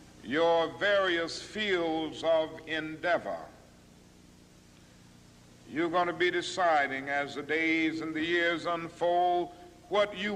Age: 60-79